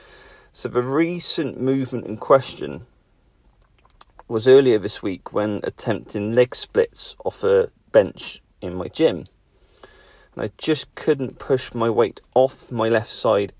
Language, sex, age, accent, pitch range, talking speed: English, male, 40-59, British, 120-175 Hz, 135 wpm